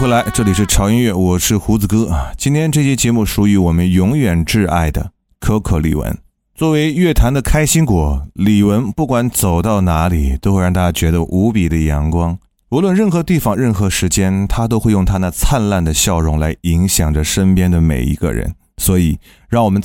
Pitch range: 85-115 Hz